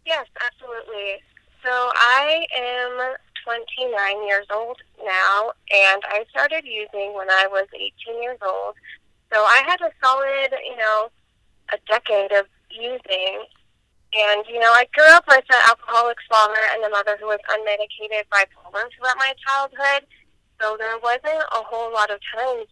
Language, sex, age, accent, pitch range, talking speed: English, female, 20-39, American, 200-235 Hz, 155 wpm